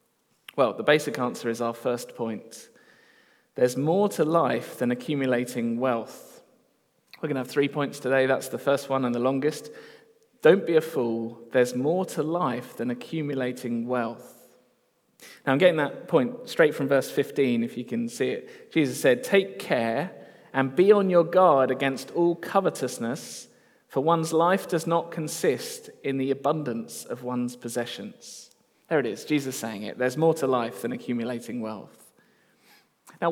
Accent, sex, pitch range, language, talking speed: British, male, 125-190 Hz, English, 165 wpm